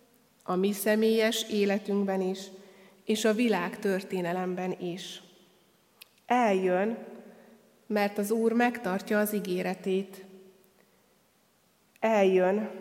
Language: Hungarian